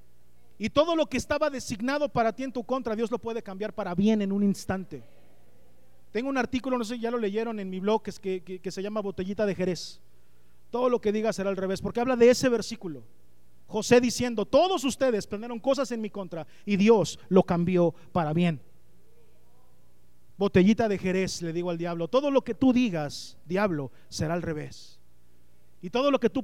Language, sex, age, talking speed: Spanish, male, 40-59, 205 wpm